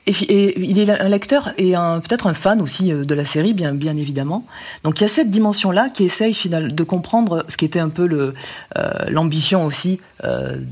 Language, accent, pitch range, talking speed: French, French, 145-200 Hz, 220 wpm